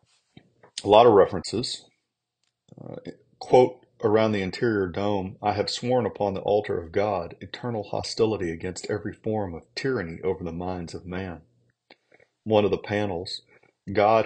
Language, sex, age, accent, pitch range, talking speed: English, male, 40-59, American, 85-100 Hz, 145 wpm